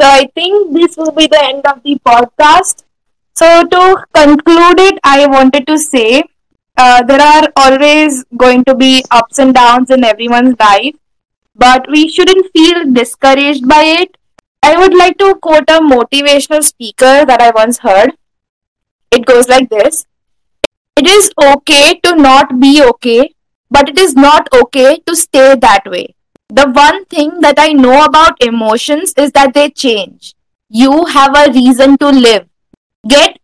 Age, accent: 10-29, Indian